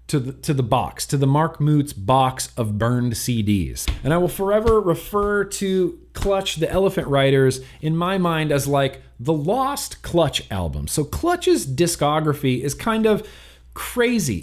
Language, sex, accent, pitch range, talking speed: English, male, American, 140-190 Hz, 160 wpm